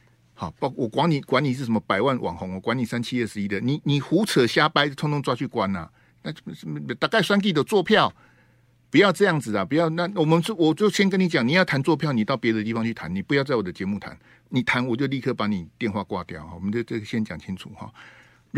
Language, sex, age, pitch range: Chinese, male, 50-69, 95-155 Hz